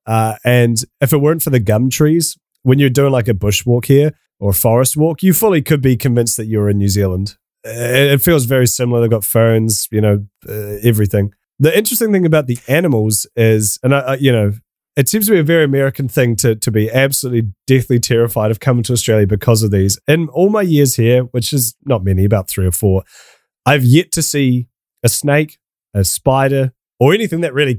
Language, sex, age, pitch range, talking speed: English, male, 30-49, 105-140 Hz, 215 wpm